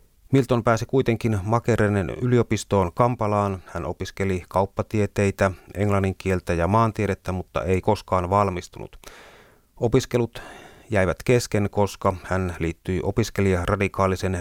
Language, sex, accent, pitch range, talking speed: Finnish, male, native, 95-110 Hz, 95 wpm